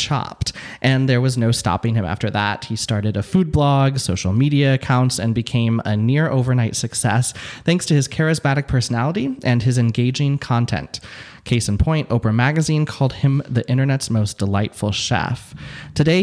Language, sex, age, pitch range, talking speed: English, male, 20-39, 110-140 Hz, 165 wpm